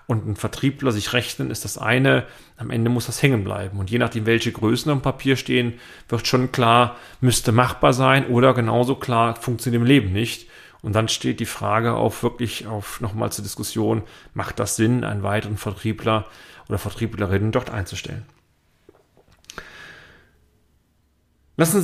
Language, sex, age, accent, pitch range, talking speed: German, male, 40-59, German, 110-130 Hz, 155 wpm